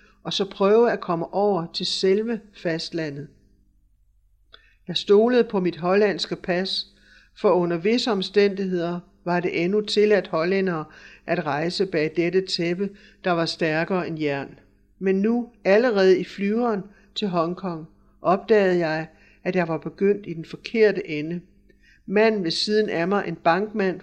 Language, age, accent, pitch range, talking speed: Danish, 60-79, native, 165-200 Hz, 145 wpm